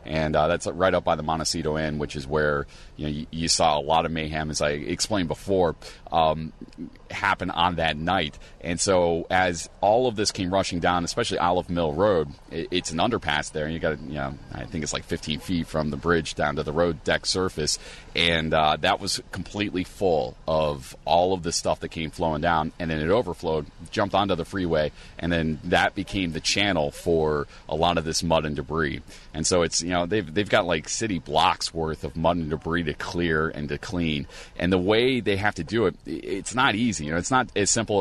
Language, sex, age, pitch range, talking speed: English, male, 30-49, 80-95 Hz, 225 wpm